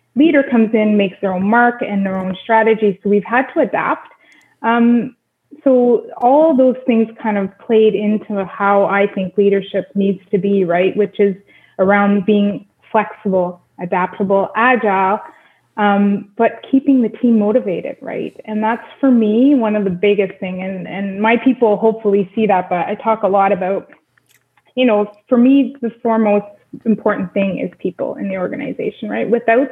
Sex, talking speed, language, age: female, 170 wpm, English, 20-39